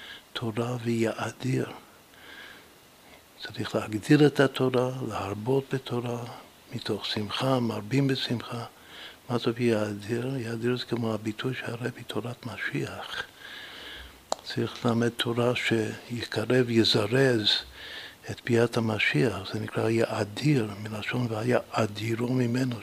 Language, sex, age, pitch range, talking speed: Hebrew, male, 60-79, 110-125 Hz, 95 wpm